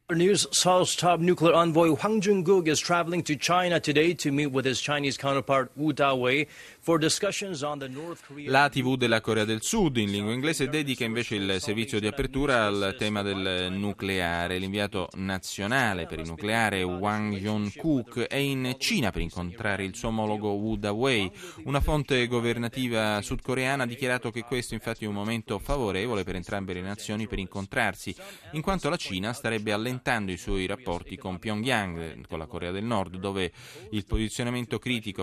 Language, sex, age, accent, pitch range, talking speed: Italian, male, 30-49, native, 95-135 Hz, 130 wpm